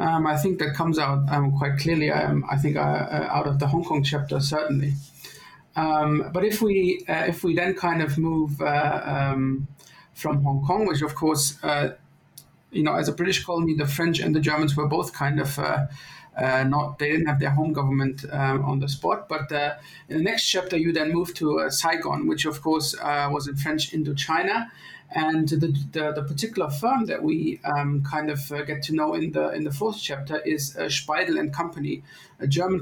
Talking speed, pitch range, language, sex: 215 wpm, 145-170 Hz, English, male